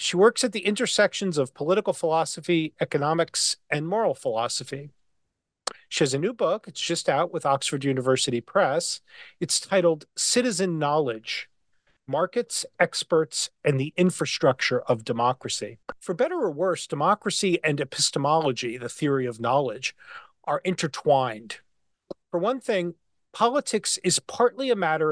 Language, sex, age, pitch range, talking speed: English, male, 40-59, 140-205 Hz, 135 wpm